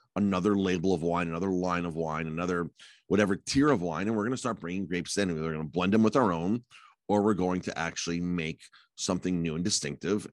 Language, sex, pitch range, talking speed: English, male, 85-115 Hz, 230 wpm